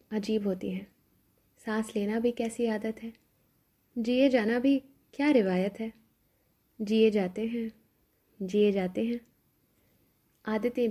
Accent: native